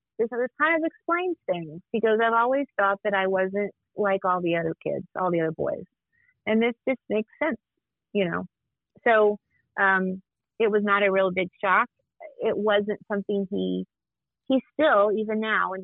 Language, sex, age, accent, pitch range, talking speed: English, female, 30-49, American, 175-215 Hz, 180 wpm